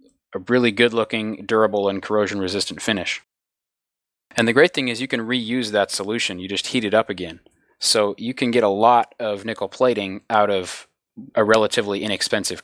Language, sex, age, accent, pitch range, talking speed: English, male, 20-39, American, 105-120 Hz, 185 wpm